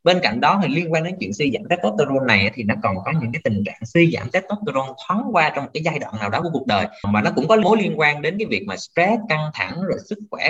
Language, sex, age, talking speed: Vietnamese, male, 20-39, 305 wpm